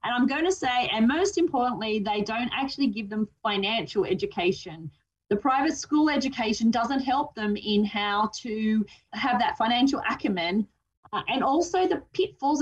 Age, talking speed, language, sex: 30-49, 160 wpm, English, female